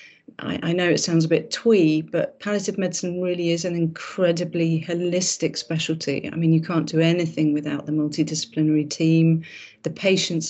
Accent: British